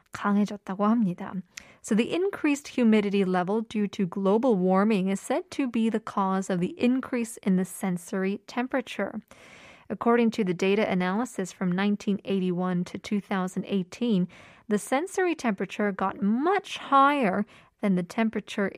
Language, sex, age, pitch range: Korean, female, 20-39, 195-280 Hz